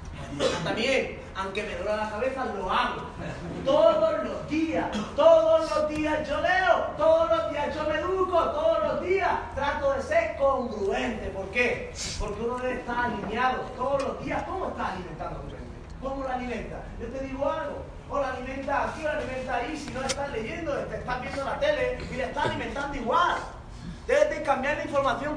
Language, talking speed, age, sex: Spanish, 190 wpm, 30-49, male